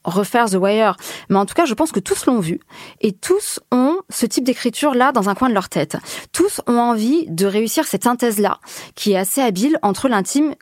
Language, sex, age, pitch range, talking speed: French, female, 20-39, 185-235 Hz, 215 wpm